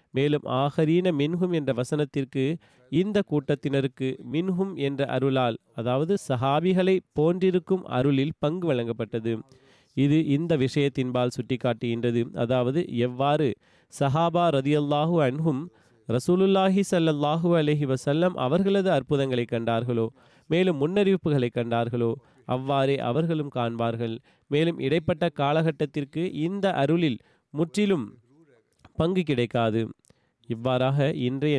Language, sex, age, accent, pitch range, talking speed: Tamil, male, 30-49, native, 125-160 Hz, 90 wpm